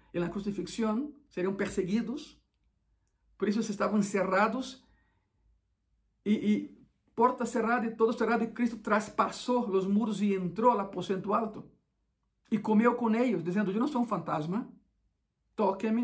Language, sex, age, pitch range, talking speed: Spanish, male, 50-69, 180-225 Hz, 140 wpm